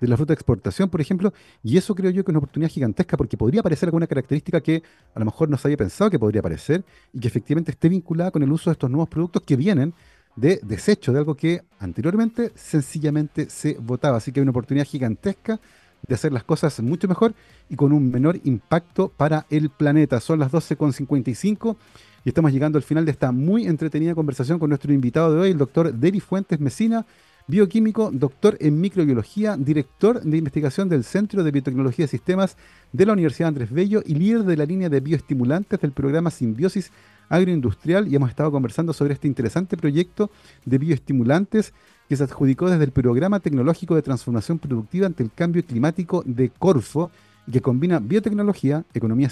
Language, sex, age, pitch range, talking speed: Spanish, male, 40-59, 135-180 Hz, 190 wpm